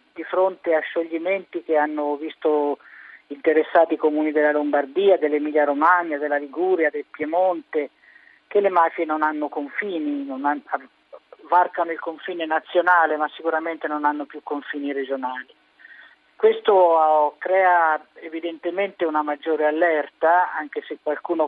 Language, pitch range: Italian, 150-175 Hz